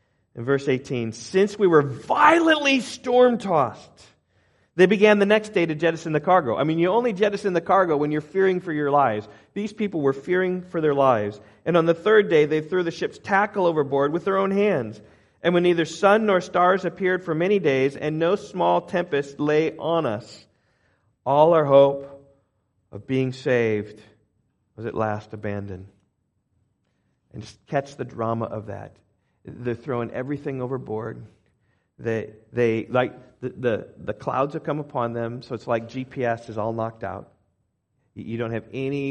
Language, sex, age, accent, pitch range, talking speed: English, male, 40-59, American, 110-150 Hz, 175 wpm